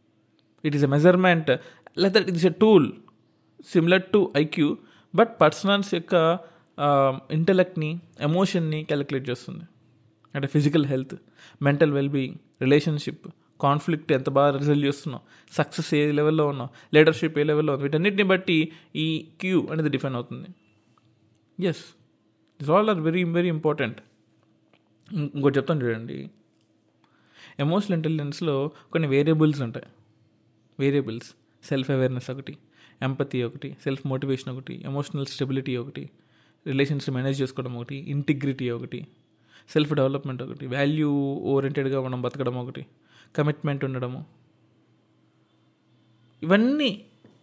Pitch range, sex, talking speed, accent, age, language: 130-165 Hz, male, 120 wpm, native, 20-39, Telugu